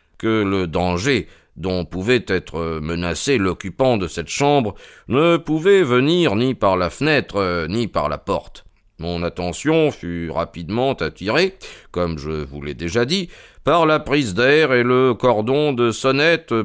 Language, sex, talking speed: French, male, 150 wpm